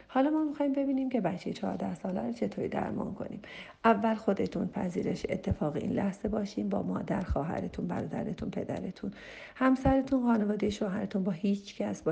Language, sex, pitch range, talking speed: Persian, female, 175-215 Hz, 155 wpm